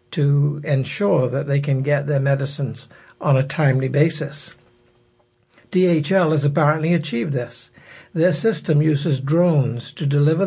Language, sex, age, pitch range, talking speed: English, male, 60-79, 140-160 Hz, 130 wpm